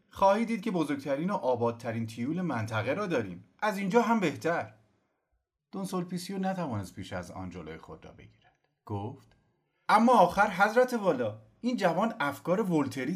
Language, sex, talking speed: Persian, male, 130 wpm